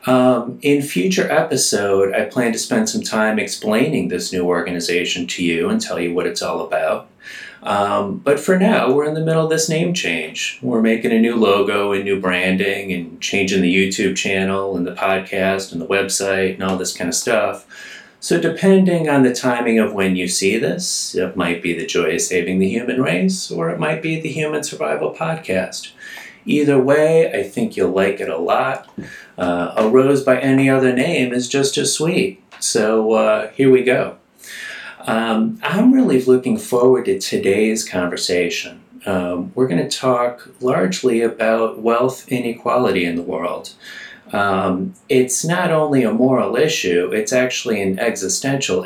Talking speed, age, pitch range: 175 wpm, 30-49, 95-140 Hz